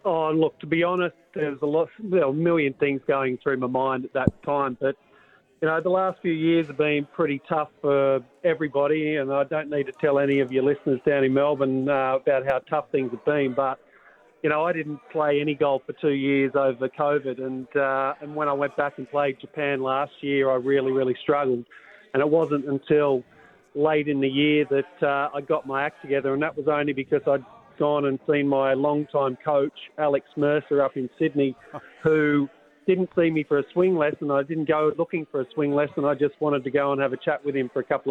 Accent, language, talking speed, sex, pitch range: Australian, English, 225 wpm, male, 135-150 Hz